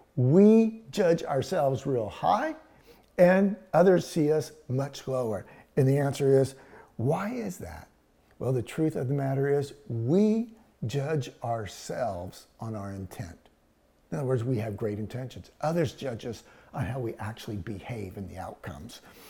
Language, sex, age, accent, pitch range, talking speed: English, male, 50-69, American, 130-185 Hz, 150 wpm